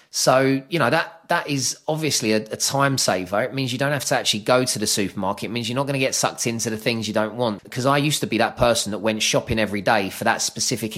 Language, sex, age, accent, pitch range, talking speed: English, male, 20-39, British, 105-125 Hz, 280 wpm